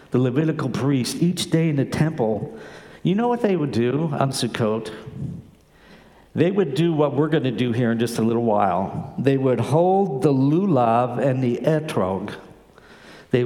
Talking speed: 175 wpm